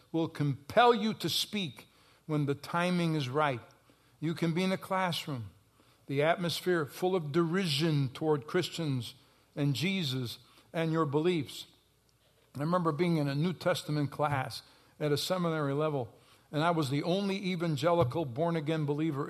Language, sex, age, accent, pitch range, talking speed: English, male, 60-79, American, 145-180 Hz, 150 wpm